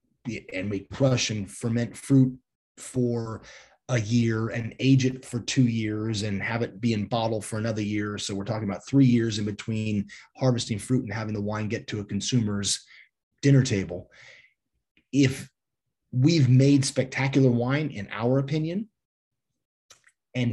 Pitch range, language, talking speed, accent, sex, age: 110-135 Hz, English, 155 wpm, American, male, 30-49